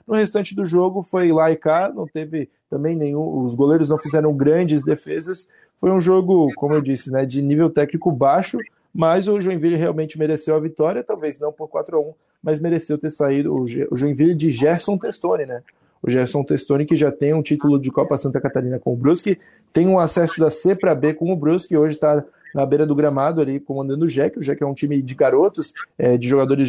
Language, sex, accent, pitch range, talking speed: Portuguese, male, Brazilian, 140-165 Hz, 215 wpm